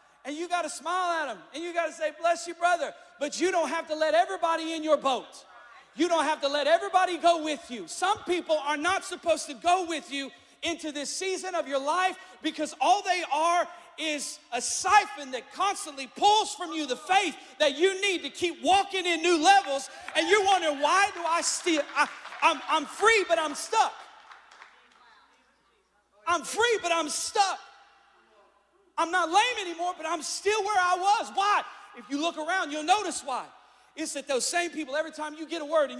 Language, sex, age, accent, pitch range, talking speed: English, male, 40-59, American, 295-355 Hz, 200 wpm